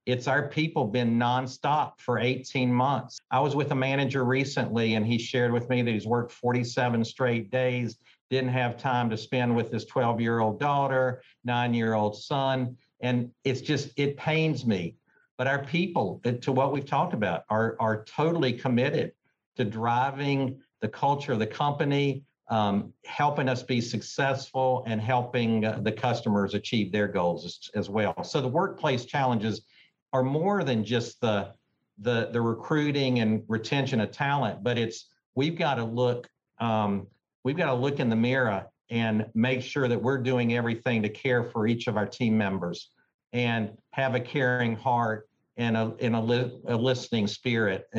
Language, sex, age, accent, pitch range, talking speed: English, male, 50-69, American, 110-130 Hz, 175 wpm